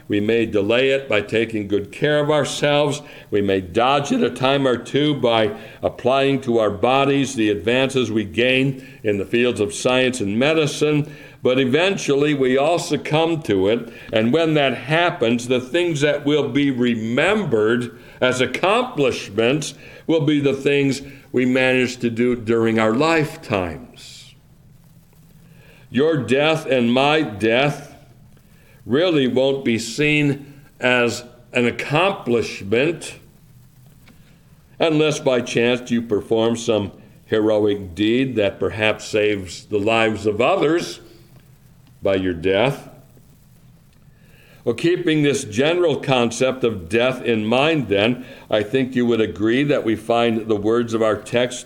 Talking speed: 135 wpm